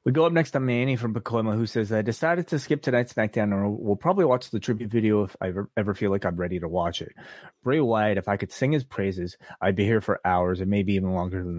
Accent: American